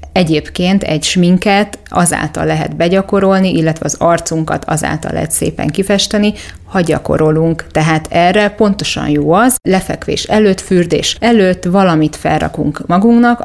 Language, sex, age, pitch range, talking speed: Hungarian, female, 30-49, 155-190 Hz, 120 wpm